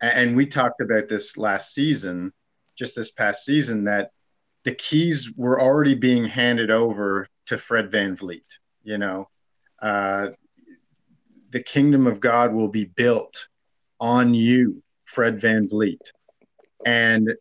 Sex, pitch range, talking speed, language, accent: male, 105-150 Hz, 135 wpm, English, American